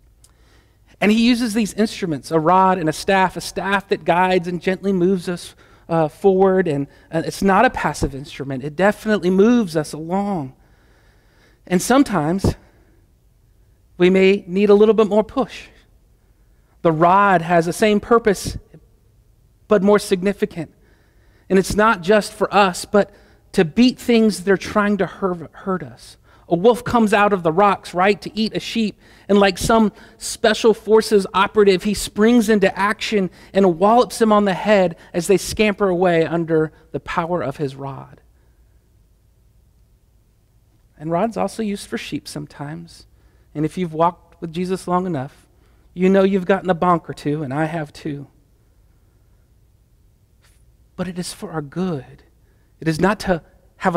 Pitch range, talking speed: 130-200 Hz, 160 wpm